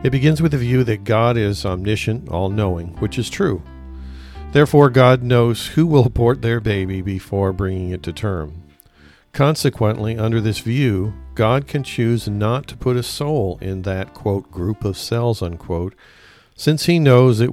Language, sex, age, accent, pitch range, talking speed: English, male, 50-69, American, 95-125 Hz, 170 wpm